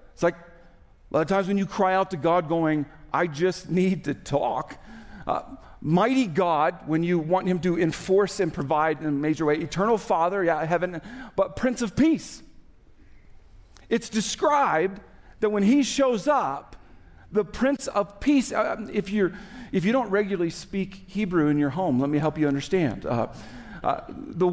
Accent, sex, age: American, male, 50-69